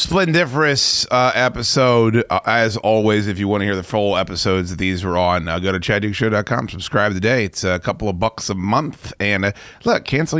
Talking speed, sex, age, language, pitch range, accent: 200 wpm, male, 30-49, English, 100-135 Hz, American